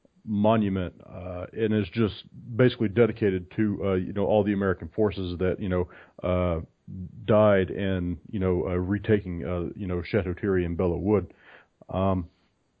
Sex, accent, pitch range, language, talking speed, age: male, American, 95-110 Hz, English, 160 wpm, 40-59